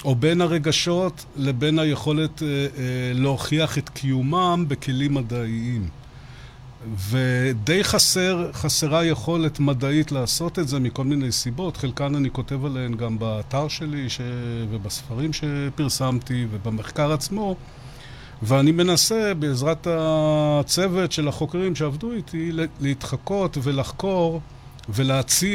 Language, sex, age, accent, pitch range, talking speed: Hebrew, male, 50-69, native, 130-170 Hz, 110 wpm